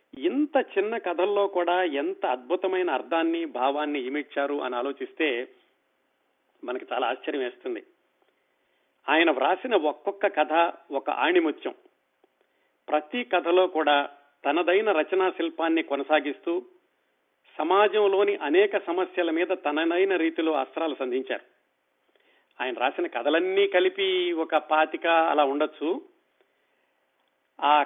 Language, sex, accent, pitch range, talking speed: Telugu, male, native, 155-195 Hz, 95 wpm